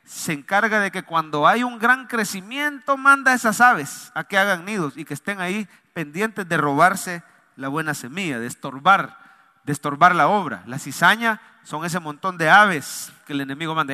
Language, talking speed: English, 190 wpm